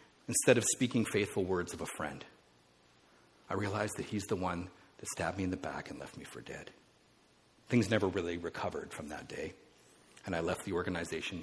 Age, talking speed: 50-69, 195 wpm